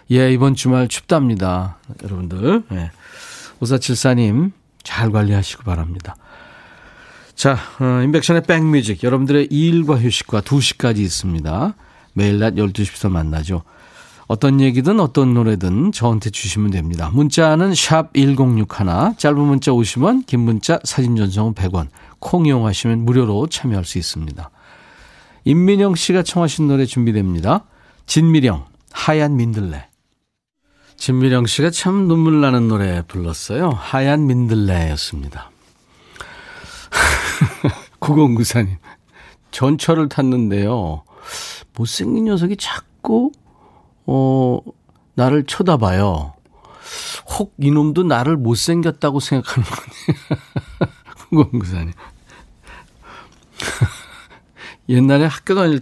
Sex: male